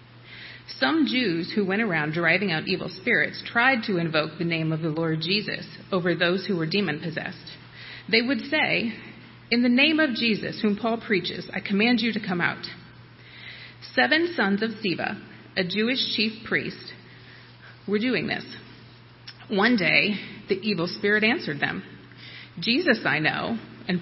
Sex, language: female, English